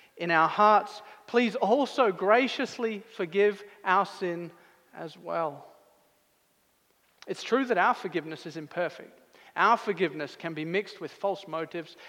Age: 40-59